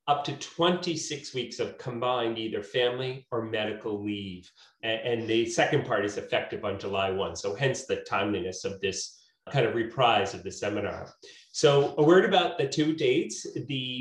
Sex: male